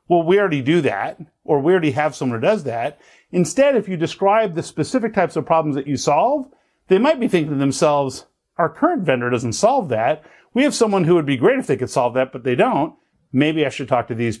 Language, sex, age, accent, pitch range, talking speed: English, male, 50-69, American, 145-205 Hz, 240 wpm